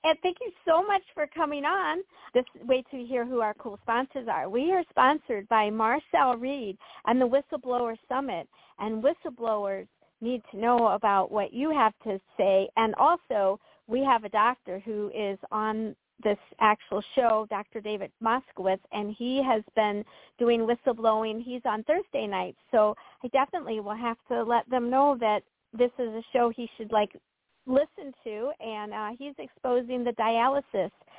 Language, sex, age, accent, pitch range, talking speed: English, female, 50-69, American, 220-285 Hz, 170 wpm